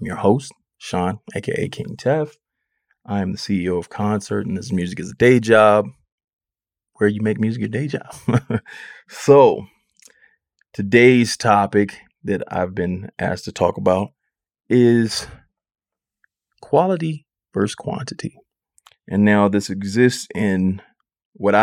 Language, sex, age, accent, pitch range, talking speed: English, male, 20-39, American, 90-105 Hz, 135 wpm